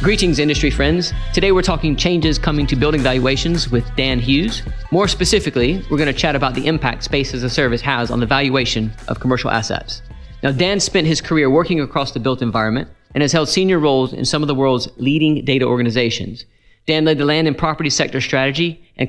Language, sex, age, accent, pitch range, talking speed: English, male, 40-59, American, 120-155 Hz, 210 wpm